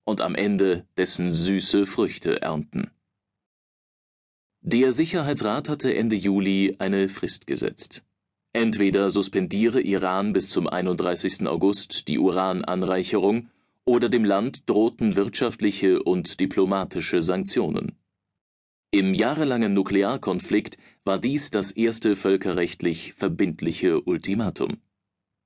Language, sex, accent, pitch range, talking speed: German, male, German, 95-120 Hz, 100 wpm